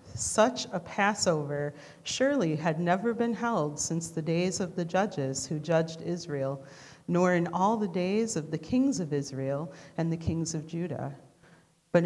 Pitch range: 150-190 Hz